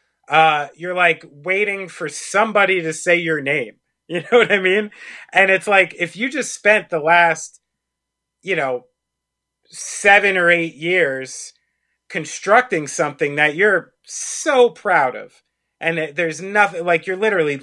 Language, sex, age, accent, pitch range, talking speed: English, male, 30-49, American, 160-205 Hz, 145 wpm